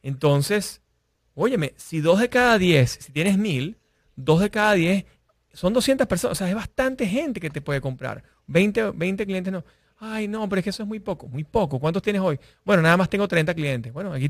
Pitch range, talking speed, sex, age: 135-195 Hz, 220 wpm, male, 30-49